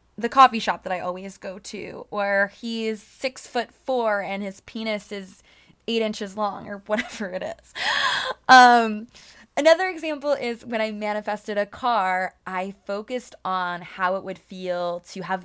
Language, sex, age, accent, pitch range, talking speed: English, female, 20-39, American, 185-235 Hz, 160 wpm